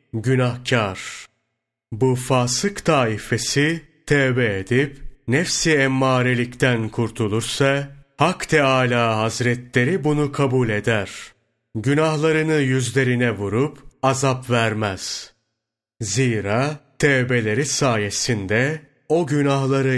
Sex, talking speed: male, 75 wpm